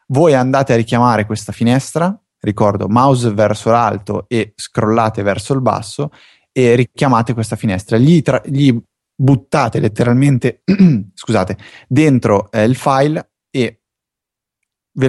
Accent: native